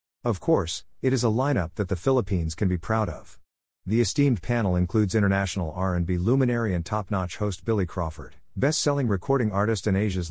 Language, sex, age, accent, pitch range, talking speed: English, male, 50-69, American, 90-115 Hz, 175 wpm